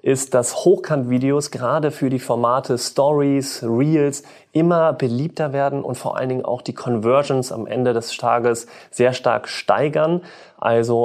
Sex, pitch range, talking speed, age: male, 120-145 Hz, 145 wpm, 30-49